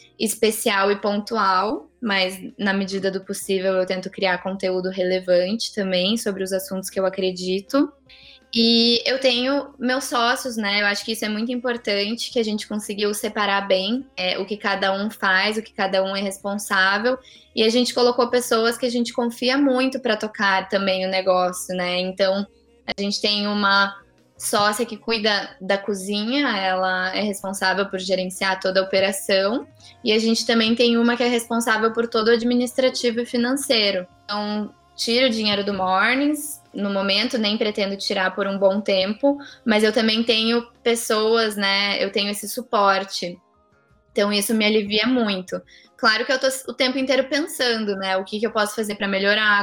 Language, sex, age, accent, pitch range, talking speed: Portuguese, female, 10-29, Brazilian, 195-235 Hz, 180 wpm